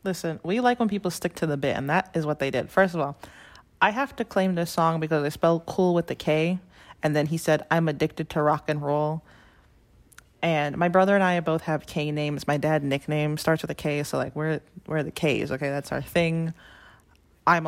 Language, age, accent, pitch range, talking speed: English, 20-39, American, 150-175 Hz, 230 wpm